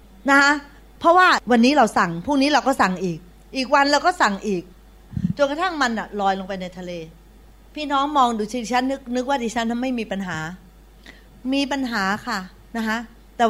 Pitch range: 195-270 Hz